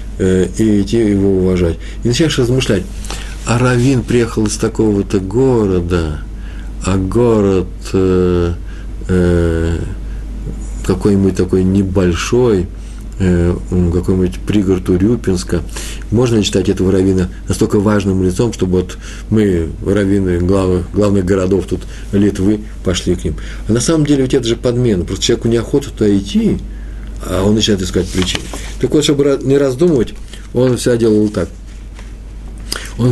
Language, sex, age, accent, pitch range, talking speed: Russian, male, 50-69, native, 95-120 Hz, 125 wpm